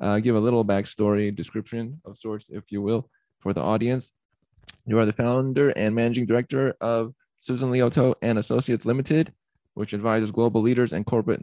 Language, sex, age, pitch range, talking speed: English, male, 20-39, 105-130 Hz, 175 wpm